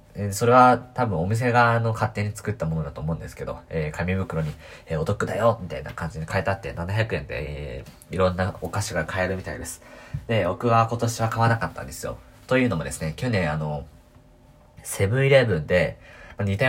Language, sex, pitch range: Japanese, male, 85-115 Hz